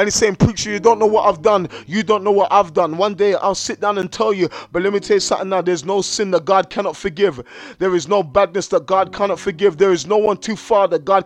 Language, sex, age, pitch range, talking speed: English, male, 20-39, 195-225 Hz, 295 wpm